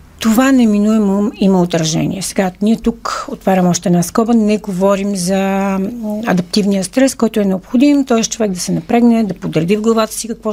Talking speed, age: 170 wpm, 40-59